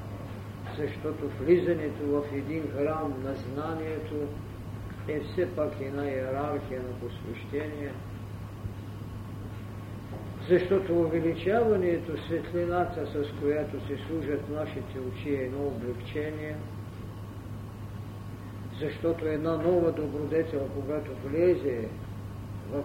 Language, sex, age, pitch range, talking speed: Bulgarian, male, 50-69, 105-155 Hz, 90 wpm